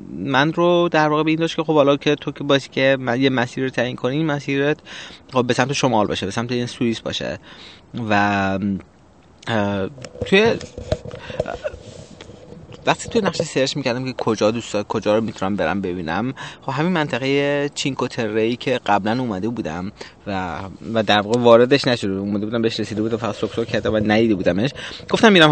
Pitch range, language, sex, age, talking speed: 105-130 Hz, Persian, male, 30-49, 175 wpm